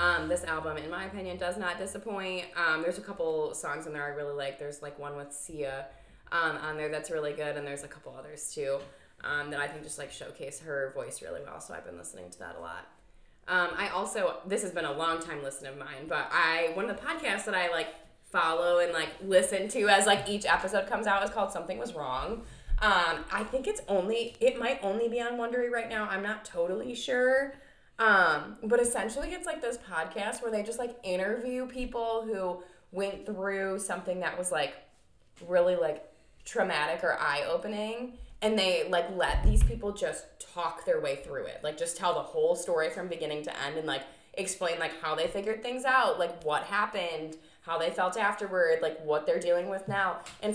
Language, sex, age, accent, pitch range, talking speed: English, female, 20-39, American, 160-235 Hz, 215 wpm